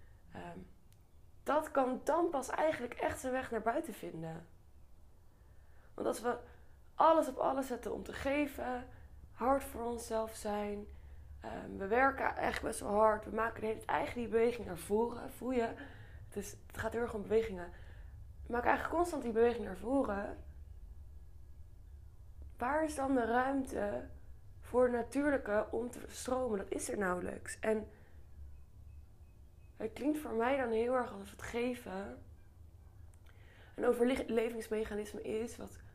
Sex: female